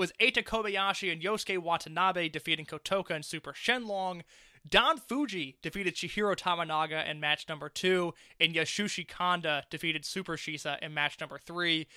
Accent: American